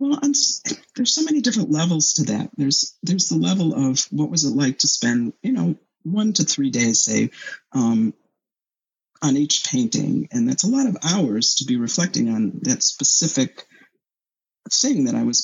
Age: 50-69